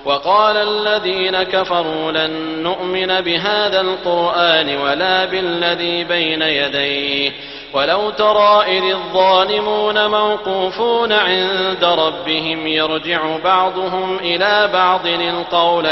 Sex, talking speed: male, 85 wpm